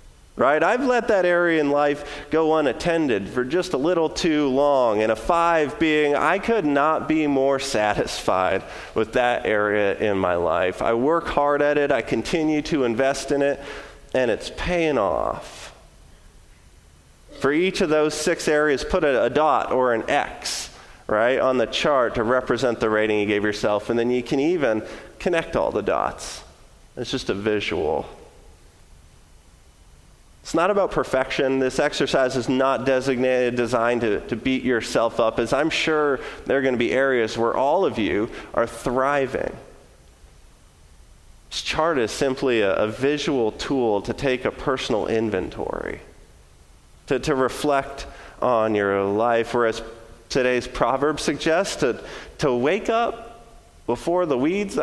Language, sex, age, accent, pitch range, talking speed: English, male, 30-49, American, 100-150 Hz, 155 wpm